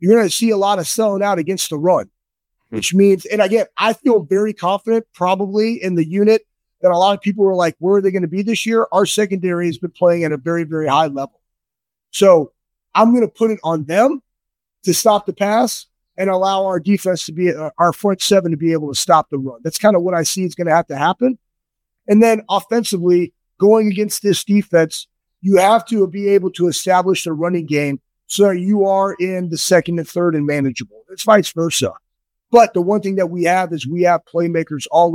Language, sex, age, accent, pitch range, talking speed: English, male, 30-49, American, 170-210 Hz, 225 wpm